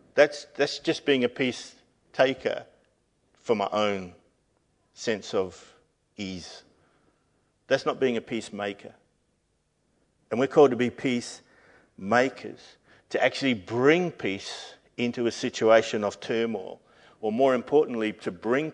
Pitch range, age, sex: 110-145 Hz, 50-69, male